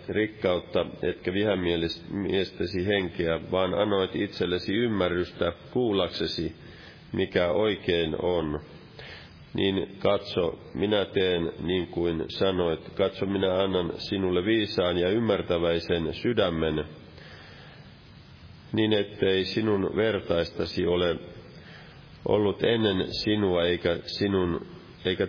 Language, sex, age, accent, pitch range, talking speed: Finnish, male, 40-59, native, 85-100 Hz, 90 wpm